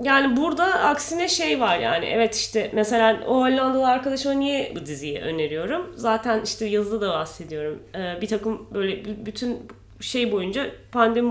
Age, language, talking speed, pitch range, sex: 30-49, English, 145 wpm, 195-245 Hz, female